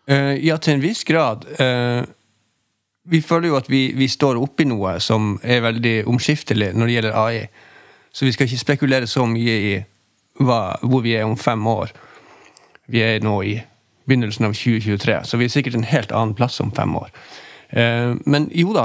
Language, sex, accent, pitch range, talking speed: Swedish, male, native, 110-135 Hz, 180 wpm